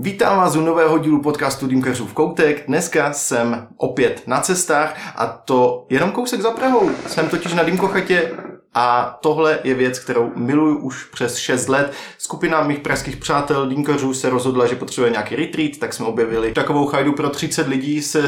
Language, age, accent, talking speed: Czech, 20-39, native, 175 wpm